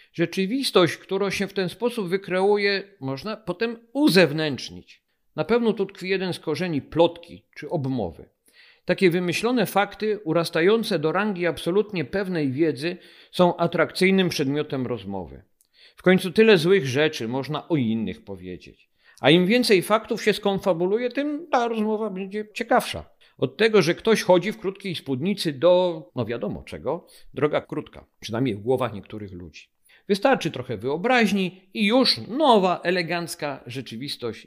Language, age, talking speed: Polish, 50-69, 140 wpm